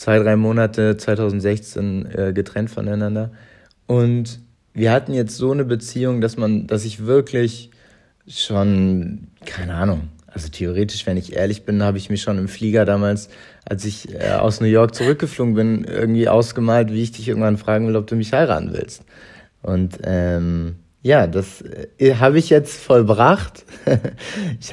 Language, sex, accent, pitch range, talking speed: German, male, German, 100-120 Hz, 160 wpm